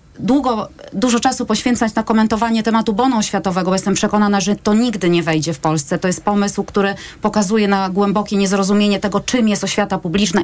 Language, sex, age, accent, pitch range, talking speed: Polish, female, 30-49, native, 195-220 Hz, 180 wpm